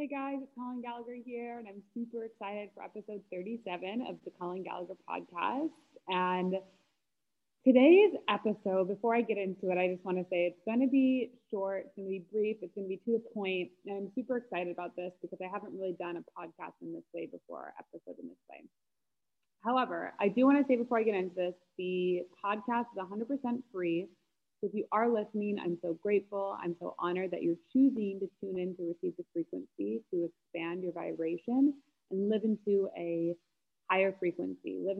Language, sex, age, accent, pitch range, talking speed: English, female, 20-39, American, 180-235 Hz, 200 wpm